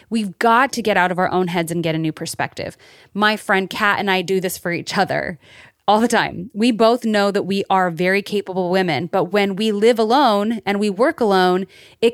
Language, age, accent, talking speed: English, 30-49, American, 225 wpm